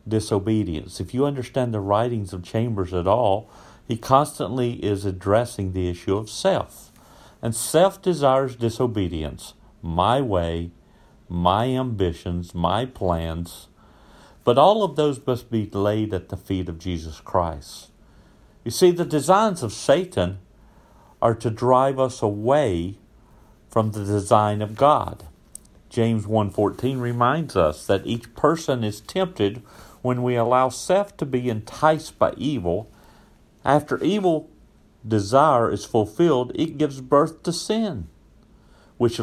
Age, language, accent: 50-69, English, American